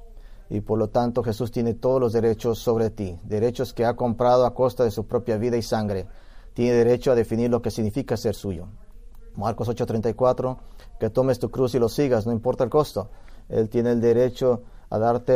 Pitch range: 110-125 Hz